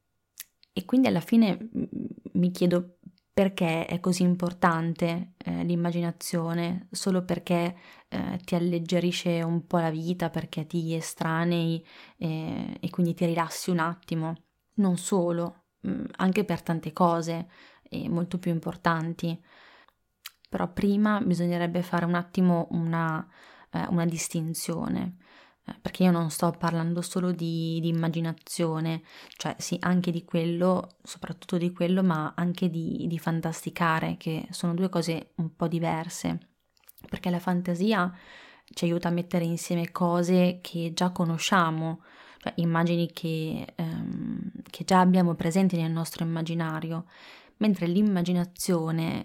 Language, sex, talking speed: Italian, female, 130 wpm